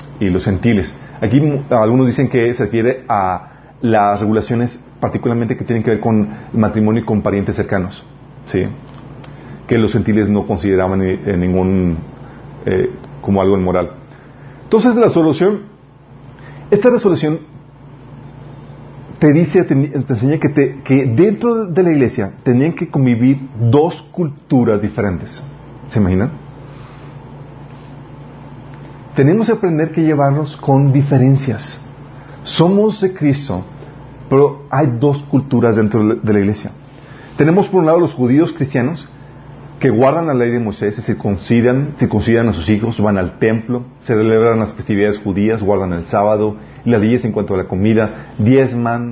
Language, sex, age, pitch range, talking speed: Spanish, male, 40-59, 105-145 Hz, 140 wpm